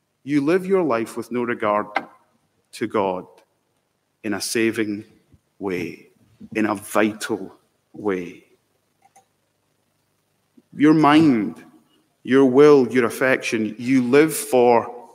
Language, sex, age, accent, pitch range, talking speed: English, male, 30-49, British, 115-155 Hz, 105 wpm